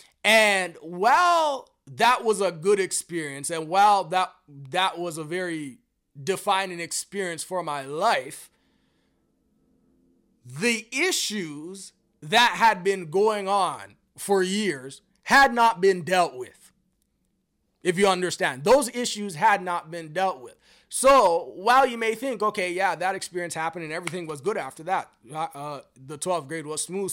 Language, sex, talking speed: English, male, 145 wpm